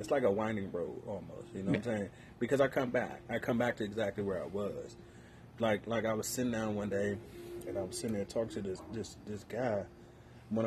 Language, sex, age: English, male, 30-49